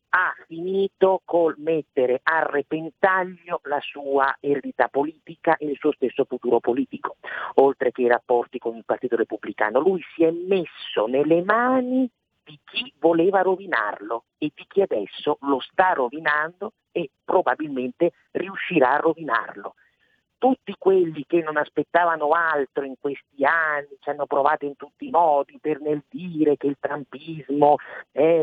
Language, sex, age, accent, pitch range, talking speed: Italian, male, 50-69, native, 140-185 Hz, 145 wpm